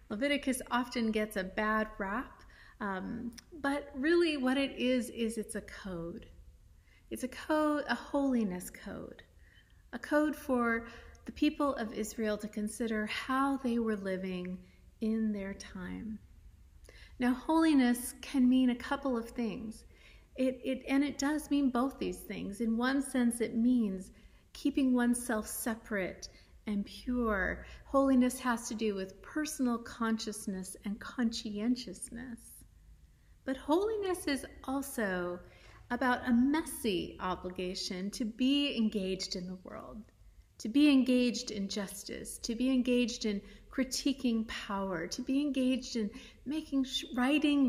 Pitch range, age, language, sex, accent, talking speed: 205-265 Hz, 30-49, English, female, American, 130 wpm